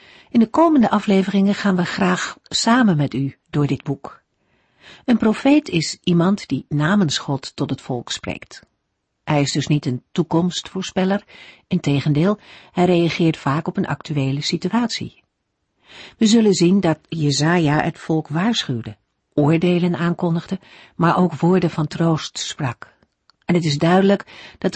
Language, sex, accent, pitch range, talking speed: Dutch, female, Dutch, 145-195 Hz, 145 wpm